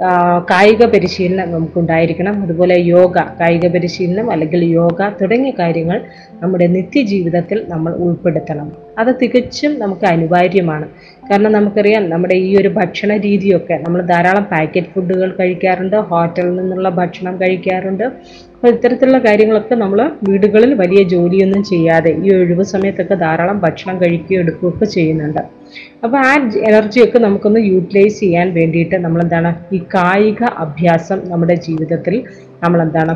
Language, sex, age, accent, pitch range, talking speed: Malayalam, female, 30-49, native, 175-210 Hz, 115 wpm